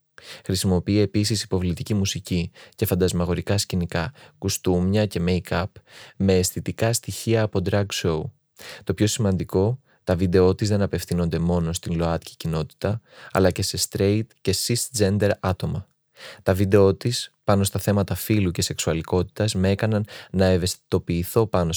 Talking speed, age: 135 wpm, 20-39